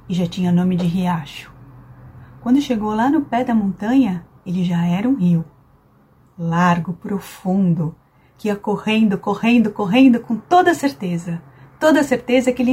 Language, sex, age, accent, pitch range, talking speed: Portuguese, female, 30-49, Brazilian, 165-245 Hz, 150 wpm